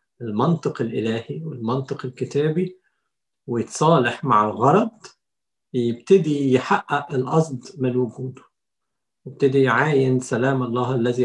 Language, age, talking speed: Arabic, 50-69, 90 wpm